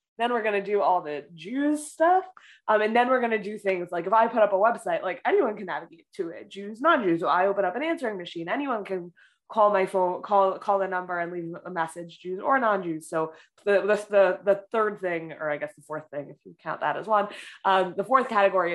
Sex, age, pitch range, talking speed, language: female, 20-39, 175-225 Hz, 245 wpm, English